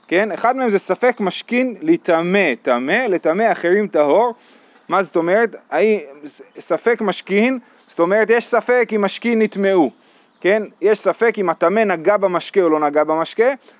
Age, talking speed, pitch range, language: 30-49, 145 wpm, 170-230 Hz, Hebrew